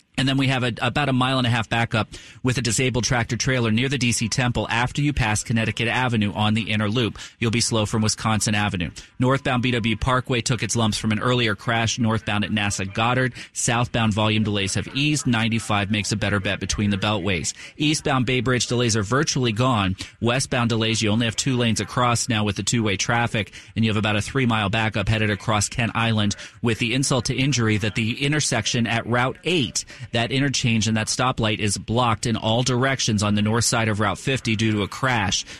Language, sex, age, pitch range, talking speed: English, male, 30-49, 110-125 Hz, 205 wpm